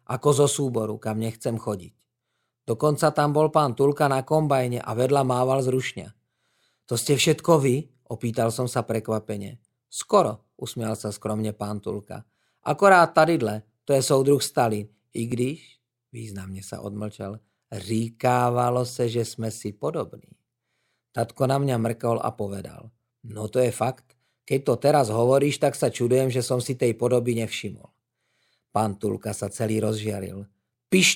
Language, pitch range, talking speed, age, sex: English, 110-140 Hz, 150 wpm, 40-59, male